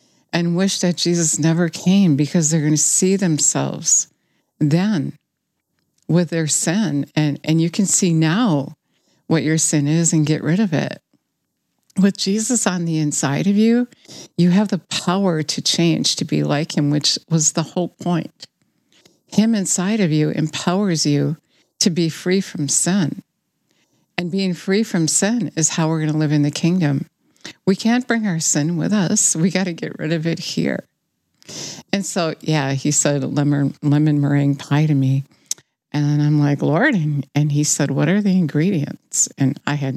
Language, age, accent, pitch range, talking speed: English, 60-79, American, 145-180 Hz, 175 wpm